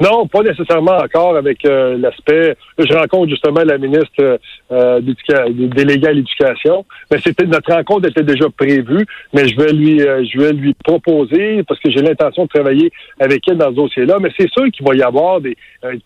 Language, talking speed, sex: French, 200 wpm, male